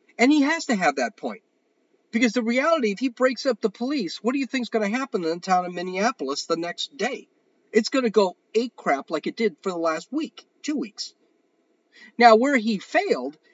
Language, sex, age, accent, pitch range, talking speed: English, male, 50-69, American, 180-270 Hz, 215 wpm